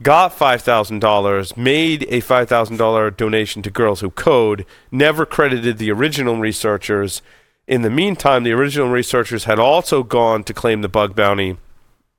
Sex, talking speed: male, 160 wpm